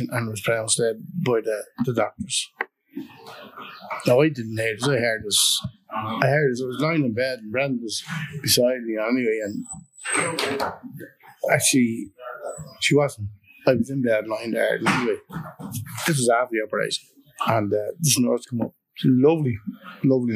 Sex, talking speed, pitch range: male, 160 wpm, 115-180 Hz